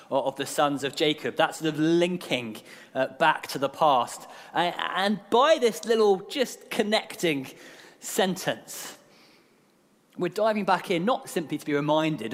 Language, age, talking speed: English, 30-49, 145 wpm